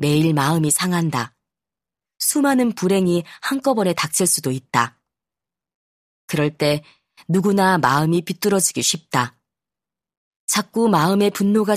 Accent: native